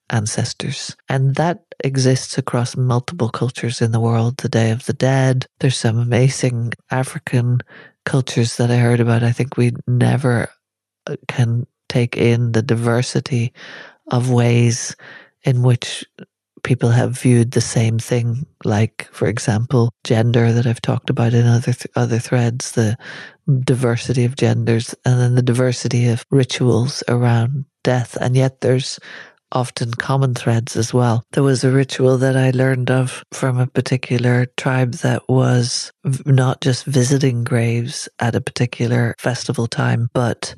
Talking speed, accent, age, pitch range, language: 145 wpm, Irish, 40-59, 120-130 Hz, English